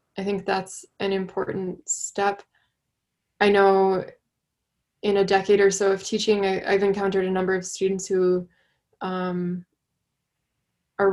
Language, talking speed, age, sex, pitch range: English, 130 wpm, 20-39, female, 195-225 Hz